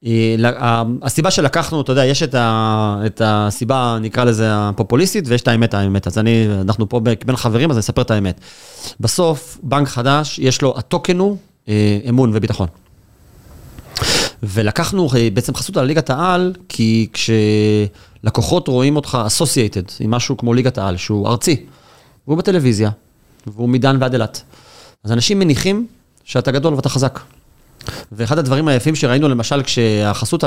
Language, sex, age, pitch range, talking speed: Hebrew, male, 30-49, 110-140 Hz, 140 wpm